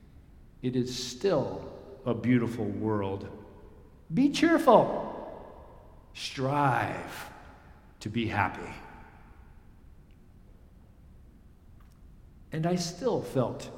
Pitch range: 110-165 Hz